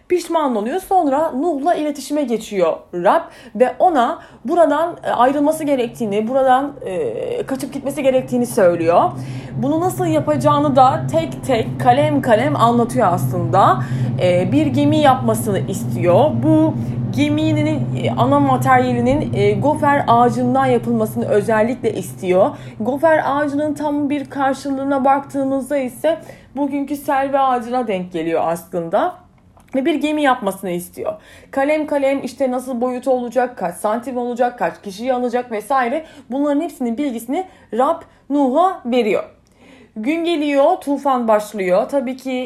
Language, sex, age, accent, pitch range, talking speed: Turkish, female, 30-49, native, 205-285 Hz, 115 wpm